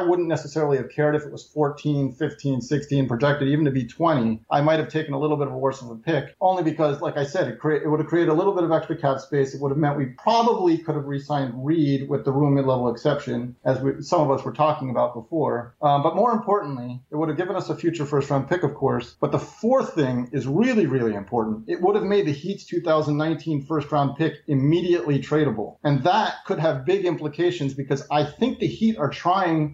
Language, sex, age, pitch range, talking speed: English, male, 40-59, 135-160 Hz, 230 wpm